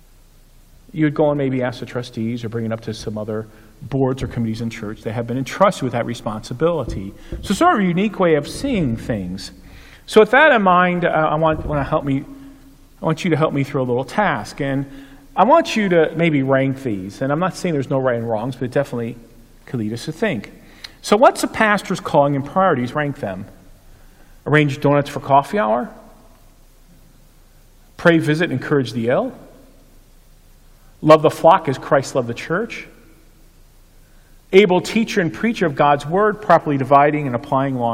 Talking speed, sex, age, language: 195 wpm, male, 40-59, English